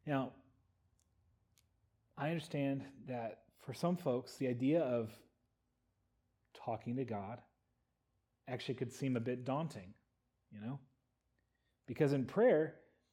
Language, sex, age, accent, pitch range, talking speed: English, male, 30-49, American, 105-150 Hz, 110 wpm